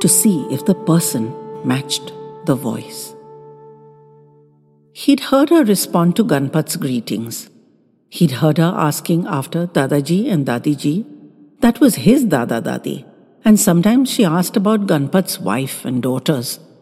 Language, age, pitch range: English, 60-79, 150-220 Hz